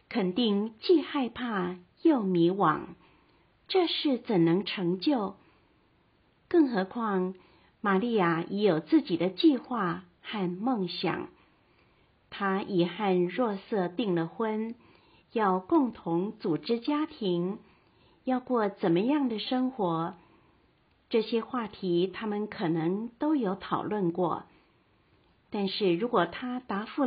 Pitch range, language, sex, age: 180-245 Hz, Chinese, female, 50-69